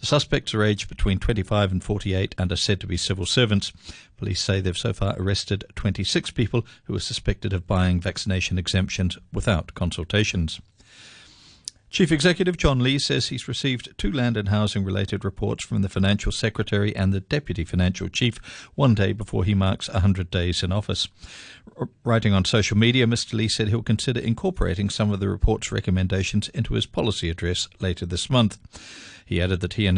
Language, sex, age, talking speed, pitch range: English, male, 50-69, 180 wpm, 95-115 Hz